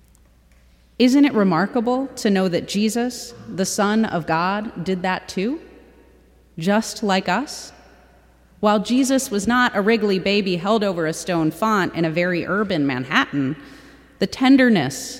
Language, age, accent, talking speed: English, 30-49, American, 140 wpm